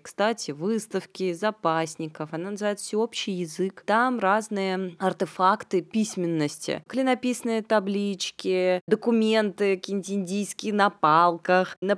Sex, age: female, 20-39